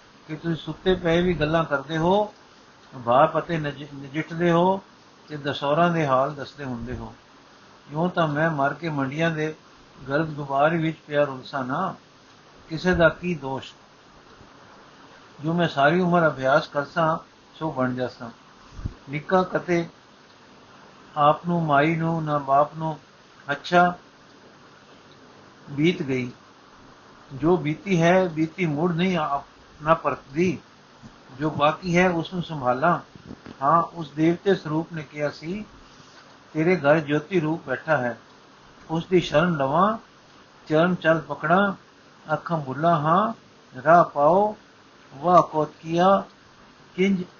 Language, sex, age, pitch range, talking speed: Punjabi, male, 60-79, 145-170 Hz, 125 wpm